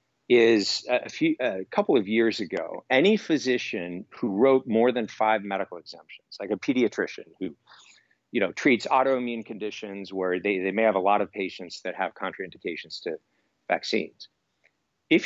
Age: 50-69